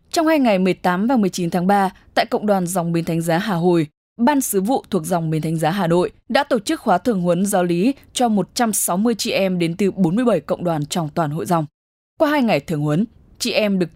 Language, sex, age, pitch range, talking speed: English, female, 10-29, 175-220 Hz, 240 wpm